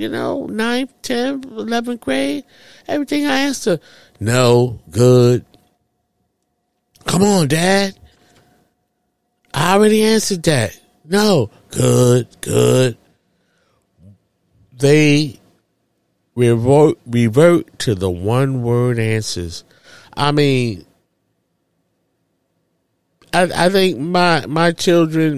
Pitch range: 120-180 Hz